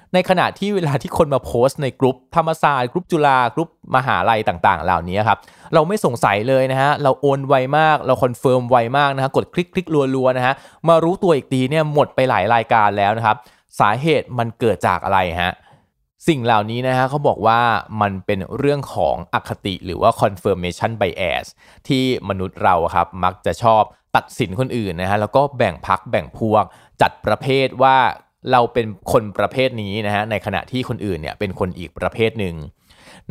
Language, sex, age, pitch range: Thai, male, 20-39, 100-140 Hz